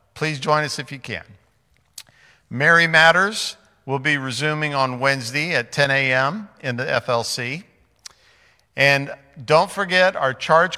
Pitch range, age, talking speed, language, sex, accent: 130-155 Hz, 50-69, 135 wpm, English, male, American